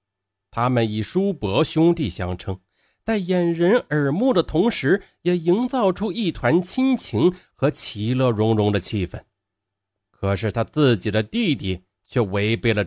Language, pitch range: Chinese, 100-140 Hz